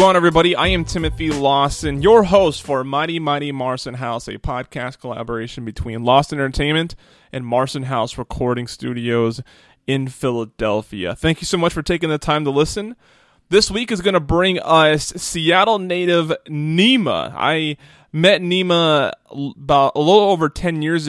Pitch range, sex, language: 130-155 Hz, male, English